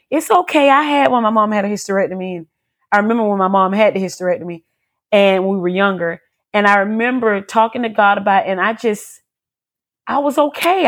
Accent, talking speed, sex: American, 200 wpm, female